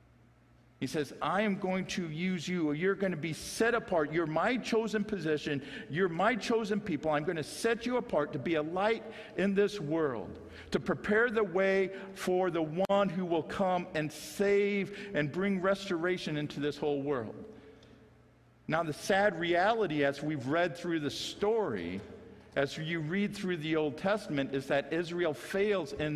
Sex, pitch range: male, 145-200 Hz